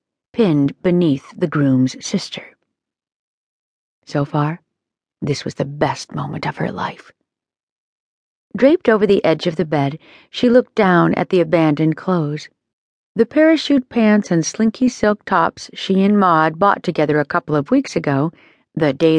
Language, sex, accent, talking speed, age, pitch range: English, female, American, 150 wpm, 40-59, 155-205 Hz